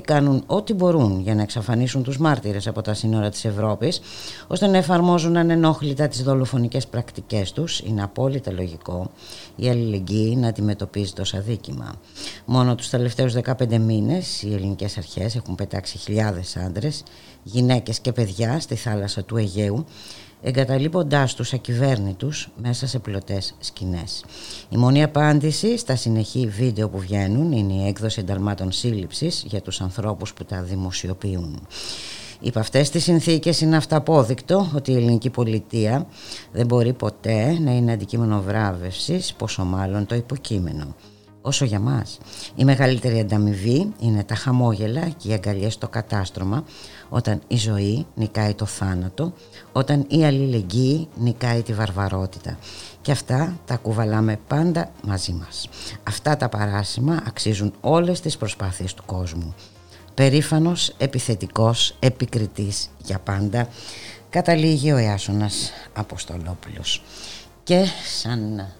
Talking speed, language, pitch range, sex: 130 wpm, Greek, 100-135 Hz, female